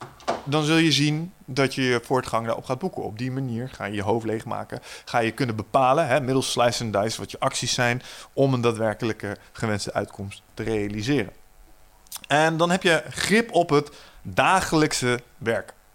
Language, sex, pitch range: Dutch, male, 110-140 Hz